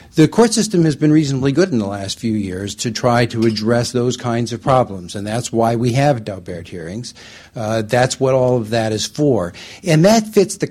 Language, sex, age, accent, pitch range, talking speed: English, male, 60-79, American, 110-135 Hz, 220 wpm